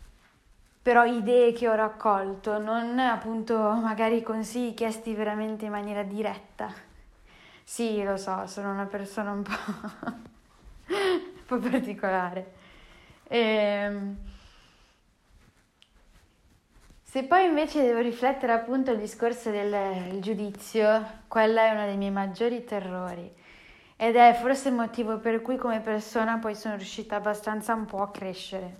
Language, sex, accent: Italian, female, native